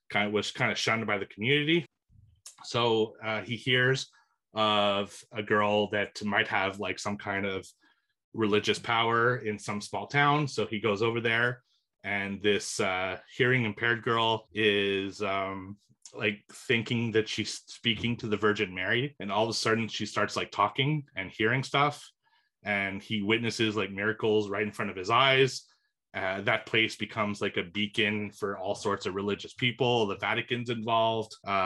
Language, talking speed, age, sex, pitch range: English, 170 wpm, 30-49, male, 100-115 Hz